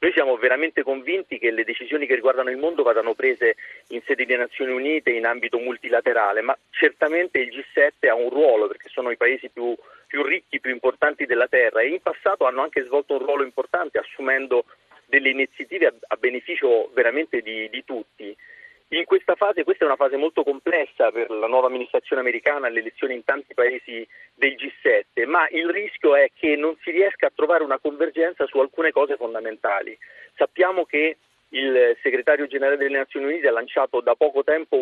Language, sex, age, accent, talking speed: Italian, male, 40-59, native, 185 wpm